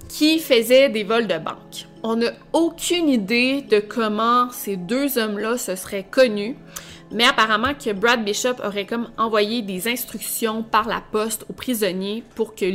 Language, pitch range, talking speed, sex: French, 205-255 Hz, 165 wpm, female